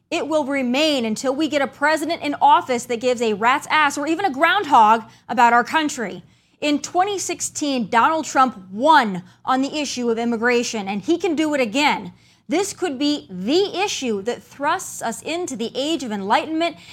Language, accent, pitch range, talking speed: English, American, 235-315 Hz, 180 wpm